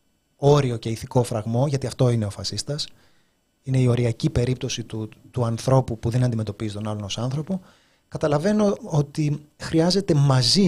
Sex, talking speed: male, 150 wpm